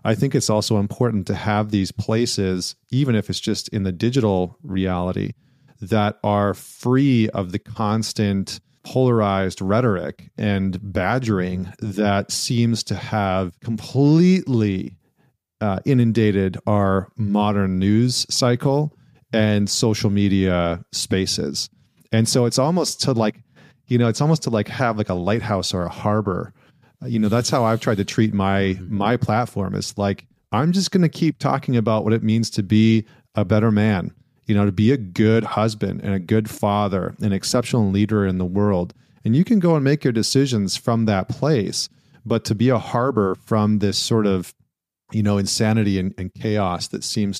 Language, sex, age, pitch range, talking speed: English, male, 40-59, 100-125 Hz, 170 wpm